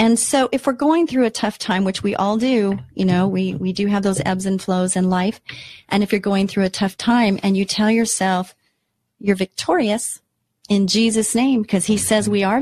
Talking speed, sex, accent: 225 wpm, female, American